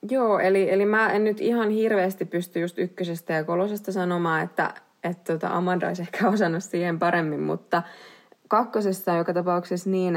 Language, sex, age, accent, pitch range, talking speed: Finnish, female, 20-39, native, 155-190 Hz, 165 wpm